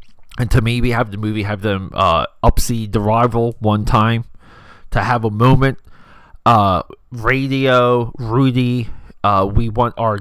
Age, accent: 30-49, American